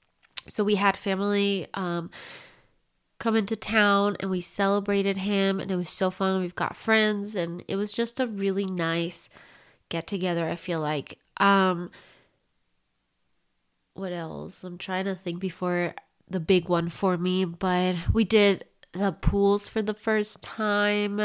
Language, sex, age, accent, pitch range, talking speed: English, female, 20-39, American, 180-210 Hz, 150 wpm